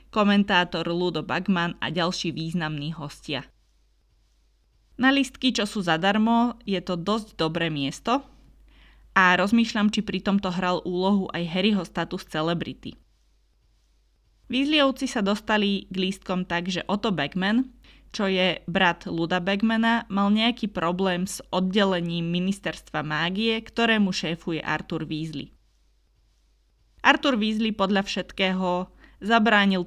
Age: 20-39